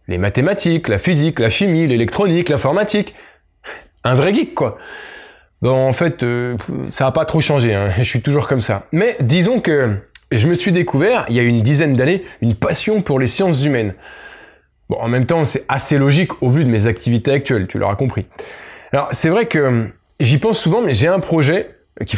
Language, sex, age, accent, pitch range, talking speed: French, male, 20-39, French, 130-180 Hz, 200 wpm